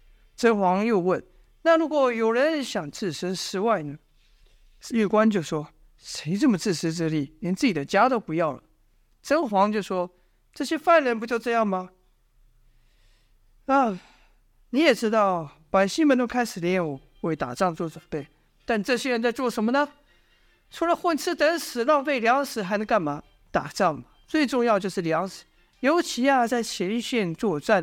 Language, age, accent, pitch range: Chinese, 50-69, native, 180-270 Hz